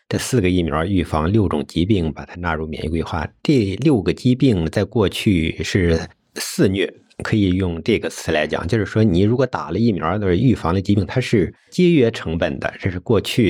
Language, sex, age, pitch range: Chinese, male, 50-69, 80-105 Hz